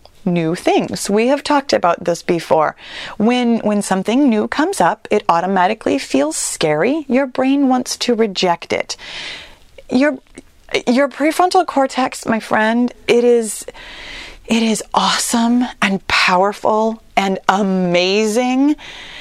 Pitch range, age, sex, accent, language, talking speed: 200-275 Hz, 30-49, female, American, English, 120 wpm